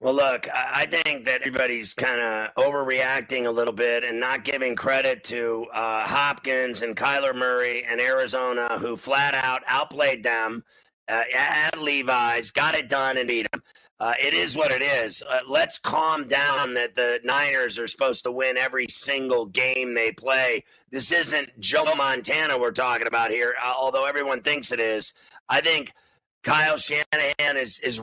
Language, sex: English, male